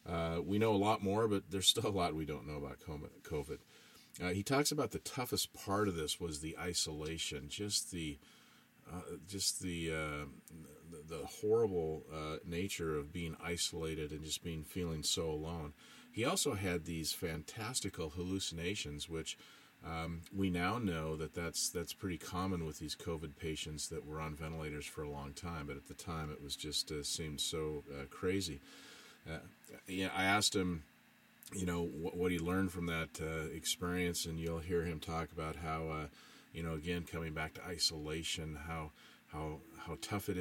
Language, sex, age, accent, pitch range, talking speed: English, male, 40-59, American, 80-95 Hz, 185 wpm